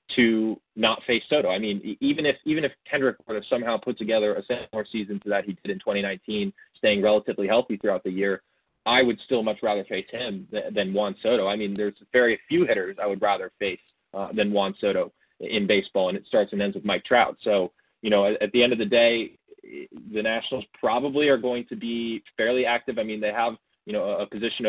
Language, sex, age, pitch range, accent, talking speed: English, male, 20-39, 100-115 Hz, American, 230 wpm